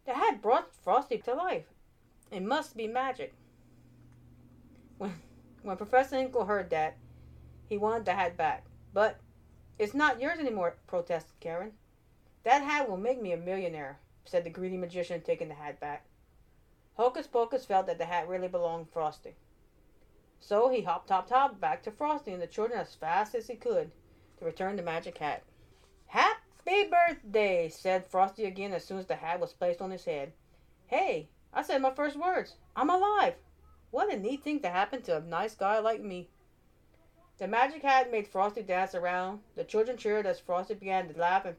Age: 40-59